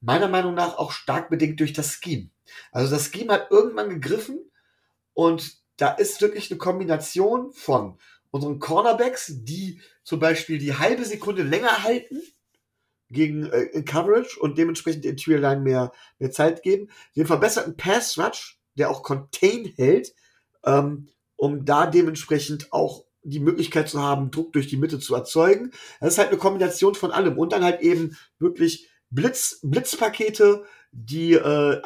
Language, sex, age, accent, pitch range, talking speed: German, male, 40-59, German, 140-200 Hz, 155 wpm